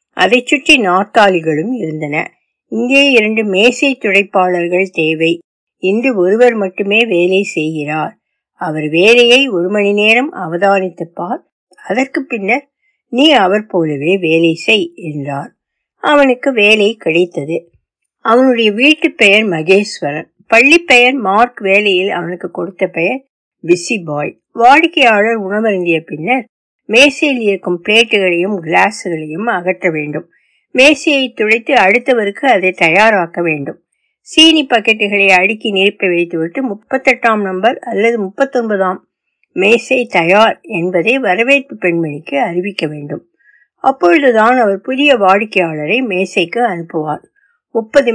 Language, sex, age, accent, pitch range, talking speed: Tamil, female, 60-79, native, 180-250 Hz, 75 wpm